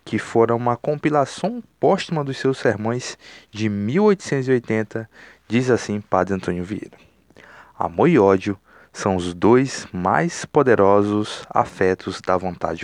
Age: 20-39